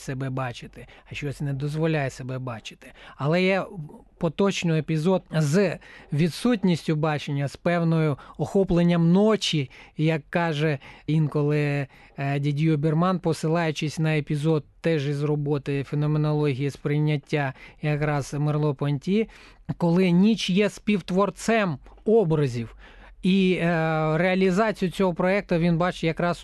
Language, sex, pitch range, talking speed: Ukrainian, male, 150-185 Hz, 110 wpm